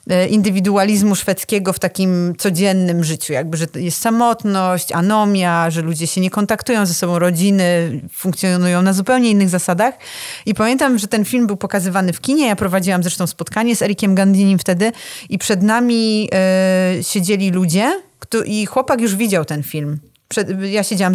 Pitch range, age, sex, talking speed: 175-225 Hz, 30-49, female, 155 wpm